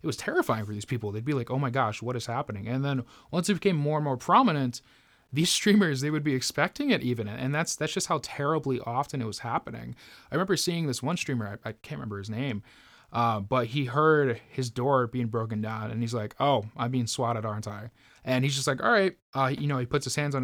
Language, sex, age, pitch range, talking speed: English, male, 20-39, 110-140 Hz, 255 wpm